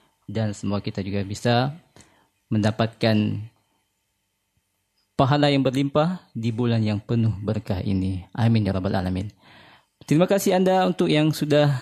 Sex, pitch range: male, 110-140 Hz